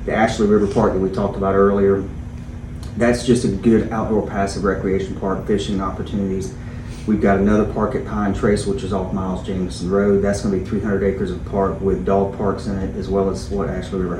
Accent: American